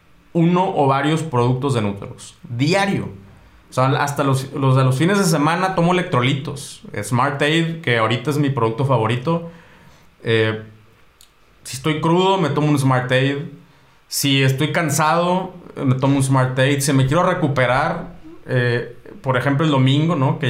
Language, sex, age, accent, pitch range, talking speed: Spanish, male, 30-49, Mexican, 125-150 Hz, 150 wpm